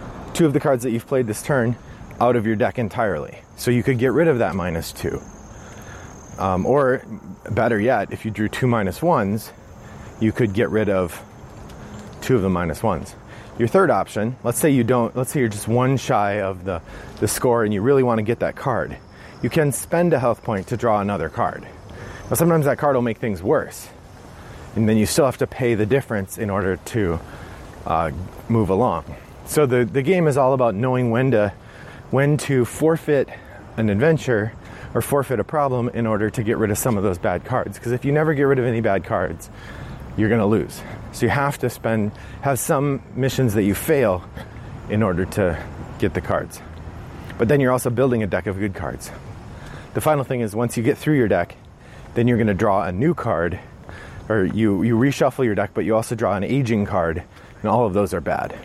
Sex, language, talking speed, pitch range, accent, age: male, English, 215 wpm, 105-130 Hz, American, 30-49